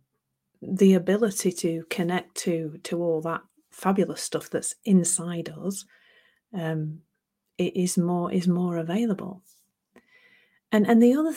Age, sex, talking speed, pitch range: 40-59, female, 125 wpm, 170-215 Hz